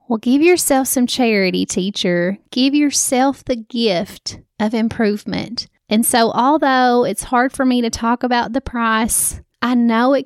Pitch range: 215-260 Hz